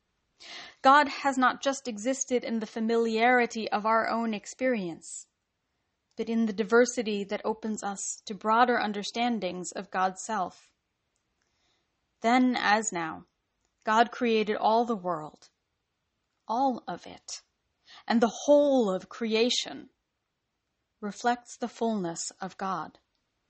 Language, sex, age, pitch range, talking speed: English, female, 30-49, 185-240 Hz, 115 wpm